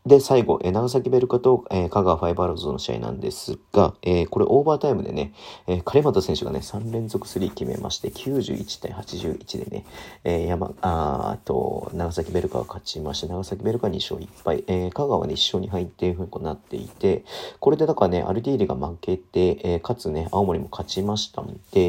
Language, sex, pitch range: Japanese, male, 85-110 Hz